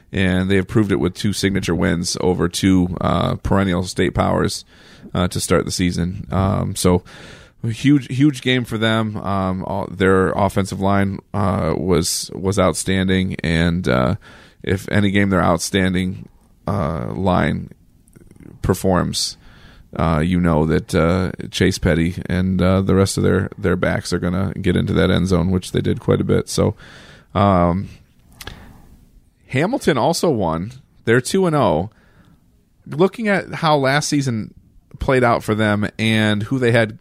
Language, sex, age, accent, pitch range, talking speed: English, male, 30-49, American, 90-105 Hz, 160 wpm